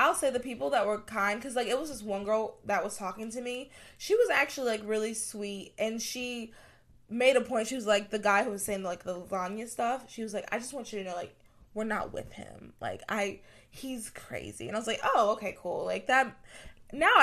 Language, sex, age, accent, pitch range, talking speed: English, female, 20-39, American, 190-245 Hz, 245 wpm